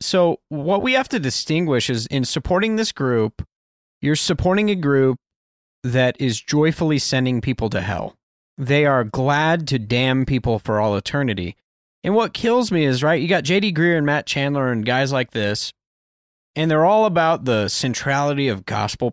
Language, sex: English, male